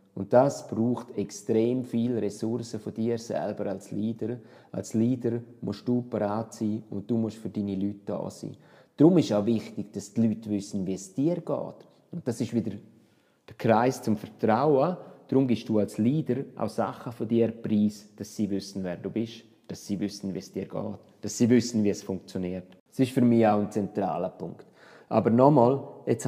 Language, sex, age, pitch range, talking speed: German, male, 30-49, 105-130 Hz, 195 wpm